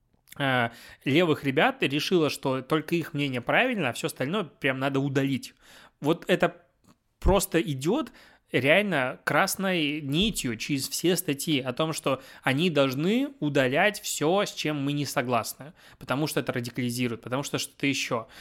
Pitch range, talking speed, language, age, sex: 125-155 Hz, 145 wpm, Russian, 20-39, male